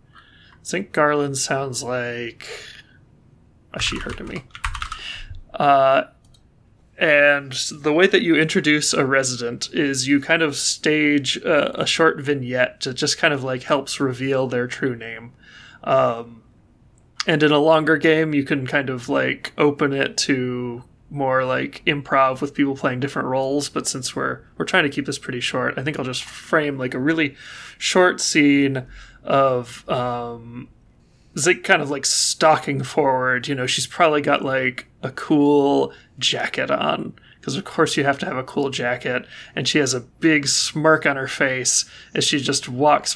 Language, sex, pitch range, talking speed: English, male, 125-150 Hz, 170 wpm